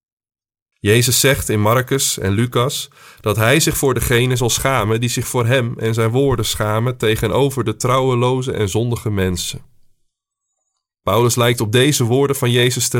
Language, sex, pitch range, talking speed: Dutch, male, 110-140 Hz, 160 wpm